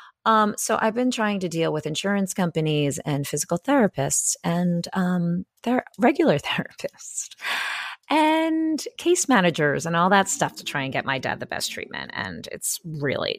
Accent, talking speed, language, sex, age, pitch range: American, 160 wpm, English, female, 30-49, 150-210 Hz